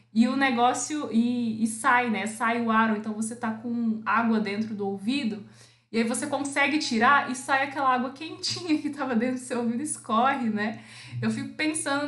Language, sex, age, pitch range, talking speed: Portuguese, female, 20-39, 220-285 Hz, 200 wpm